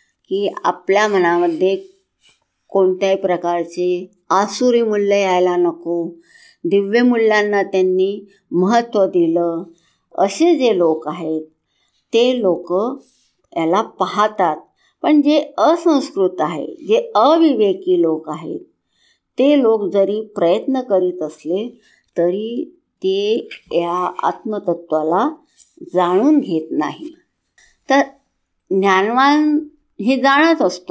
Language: Hindi